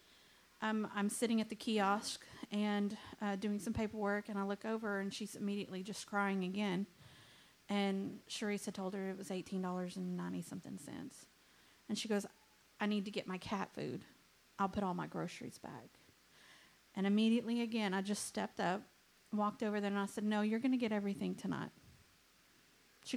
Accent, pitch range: American, 205-240 Hz